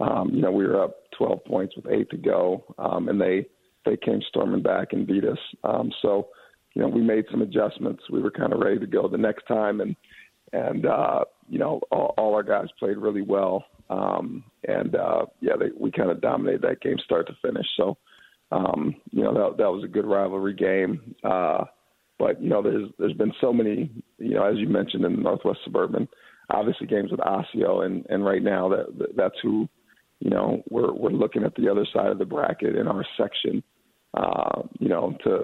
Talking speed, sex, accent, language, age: 215 wpm, male, American, English, 40-59